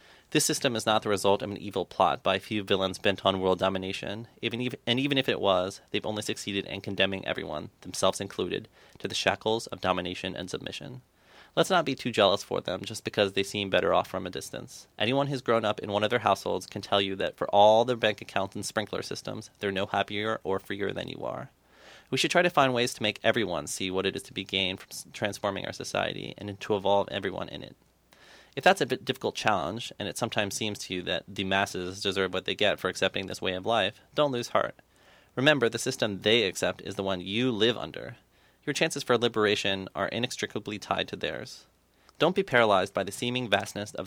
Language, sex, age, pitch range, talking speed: English, male, 30-49, 95-115 Hz, 225 wpm